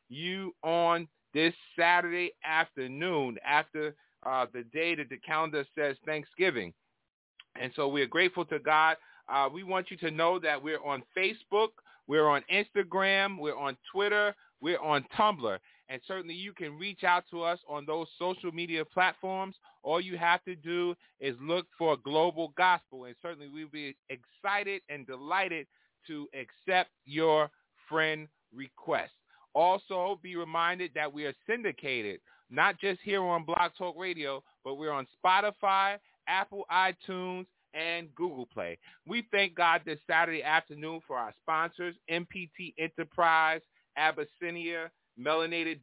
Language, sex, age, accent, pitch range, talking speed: English, male, 30-49, American, 150-180 Hz, 145 wpm